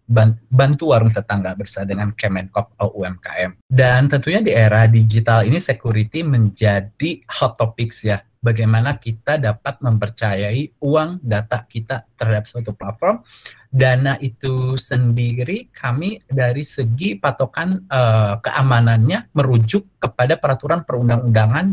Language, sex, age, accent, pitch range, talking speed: Indonesian, male, 30-49, native, 115-145 Hz, 115 wpm